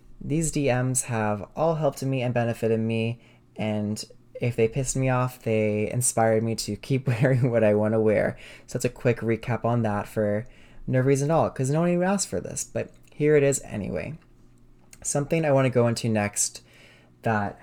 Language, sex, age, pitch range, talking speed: English, male, 20-39, 105-125 Hz, 195 wpm